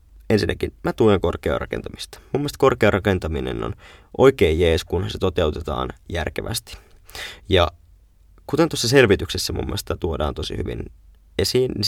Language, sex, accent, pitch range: Finnish, male, native, 85-100 Hz